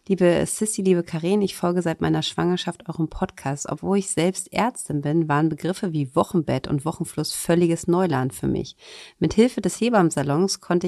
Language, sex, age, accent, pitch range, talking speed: German, female, 40-59, German, 145-180 Hz, 165 wpm